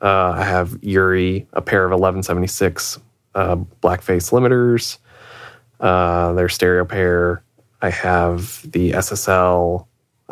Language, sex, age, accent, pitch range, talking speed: English, male, 20-39, American, 90-110 Hz, 115 wpm